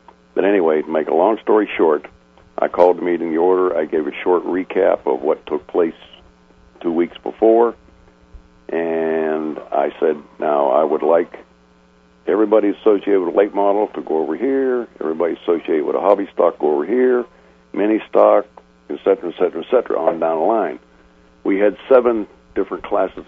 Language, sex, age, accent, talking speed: English, male, 60-79, American, 185 wpm